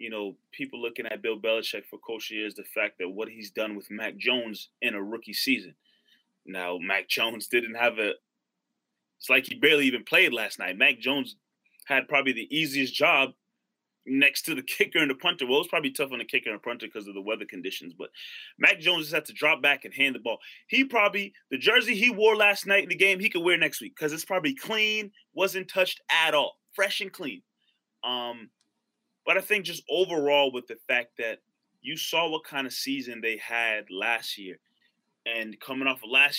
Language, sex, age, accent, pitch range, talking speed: English, male, 20-39, American, 125-185 Hz, 220 wpm